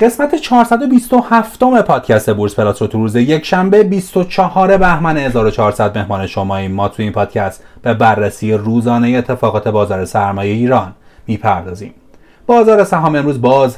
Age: 30-49